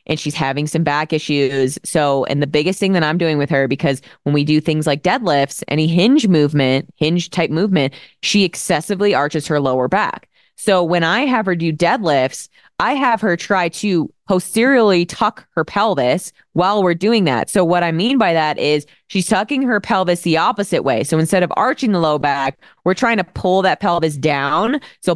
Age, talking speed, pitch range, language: 20-39, 200 wpm, 150-195 Hz, English